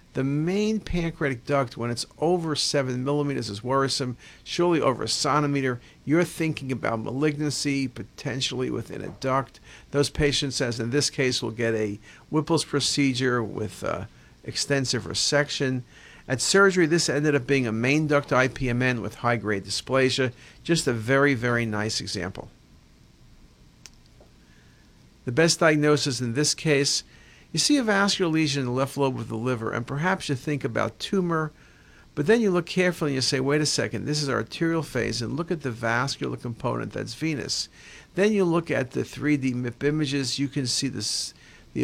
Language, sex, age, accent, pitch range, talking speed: English, male, 50-69, American, 125-155 Hz, 165 wpm